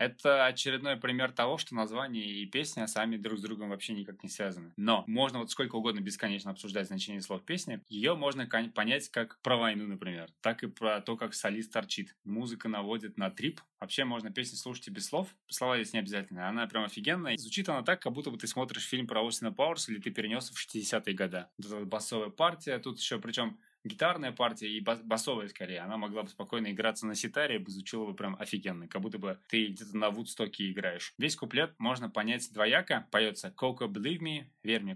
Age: 20-39